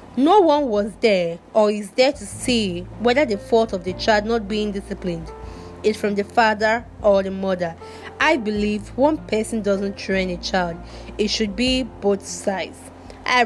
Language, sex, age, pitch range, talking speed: English, female, 20-39, 205-255 Hz, 175 wpm